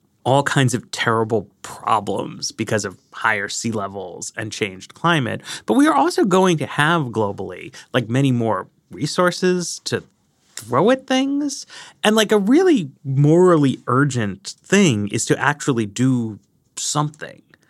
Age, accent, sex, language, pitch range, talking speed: 30-49, American, male, English, 115-170 Hz, 140 wpm